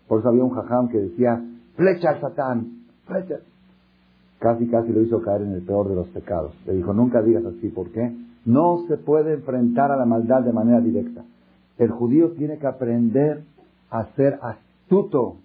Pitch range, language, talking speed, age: 95-130 Hz, Spanish, 185 wpm, 50-69